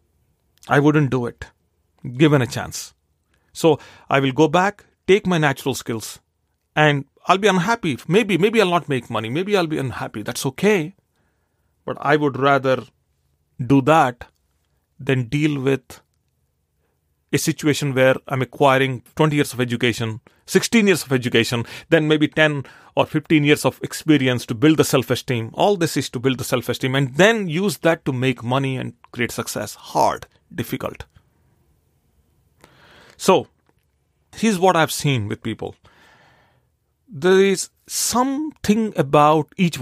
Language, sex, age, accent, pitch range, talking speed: English, male, 40-59, Indian, 105-160 Hz, 145 wpm